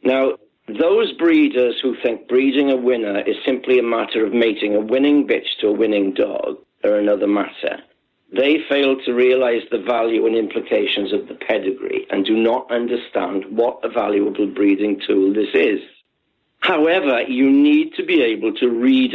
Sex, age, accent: male, 60-79, British